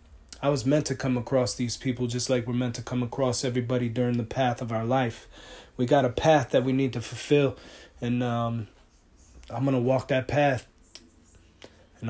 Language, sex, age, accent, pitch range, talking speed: English, male, 20-39, American, 125-155 Hz, 200 wpm